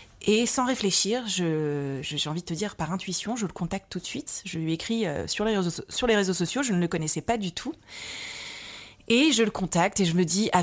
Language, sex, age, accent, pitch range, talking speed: French, female, 30-49, French, 170-220 Hz, 245 wpm